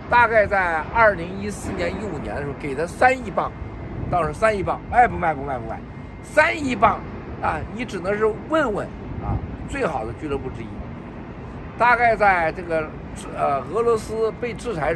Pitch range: 160-230 Hz